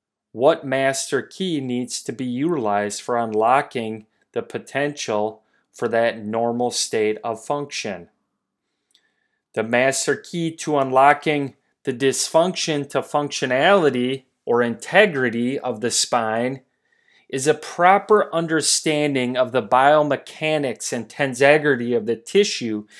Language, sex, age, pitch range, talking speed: English, male, 30-49, 120-145 Hz, 110 wpm